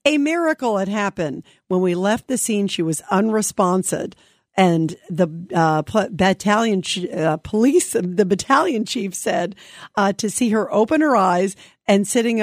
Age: 50-69